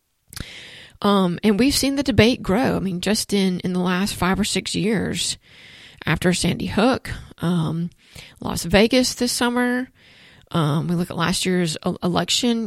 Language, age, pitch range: English, 40-59, 180-215 Hz